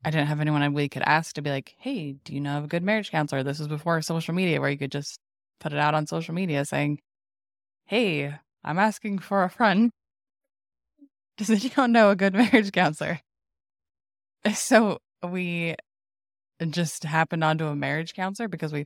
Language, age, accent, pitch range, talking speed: English, 20-39, American, 140-170 Hz, 185 wpm